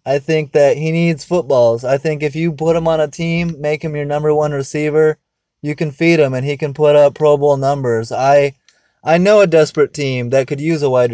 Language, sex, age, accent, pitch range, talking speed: English, male, 20-39, American, 140-165 Hz, 235 wpm